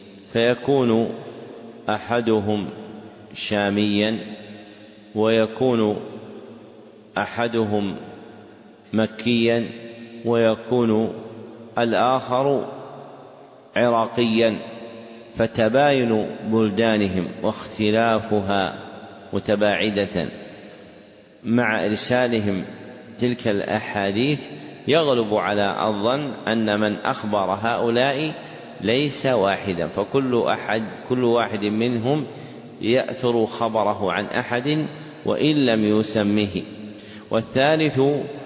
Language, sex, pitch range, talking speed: Arabic, male, 105-120 Hz, 60 wpm